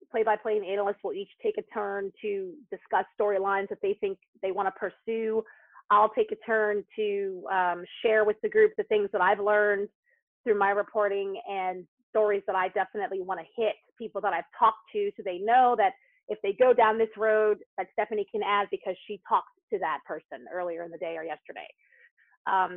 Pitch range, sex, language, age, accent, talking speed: 195-275 Hz, female, English, 30-49, American, 200 wpm